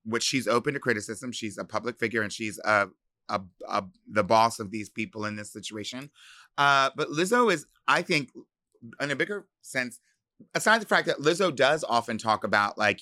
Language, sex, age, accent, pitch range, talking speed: English, male, 30-49, American, 110-140 Hz, 195 wpm